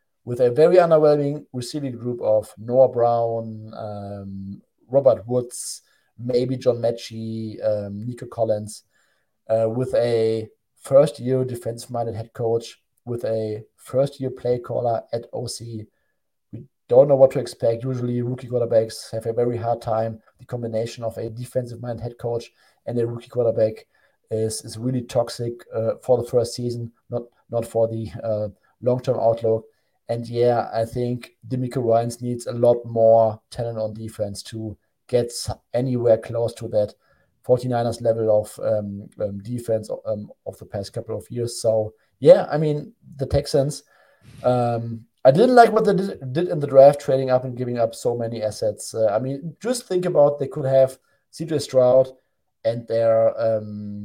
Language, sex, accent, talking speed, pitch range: English, male, German, 160 wpm, 110-125 Hz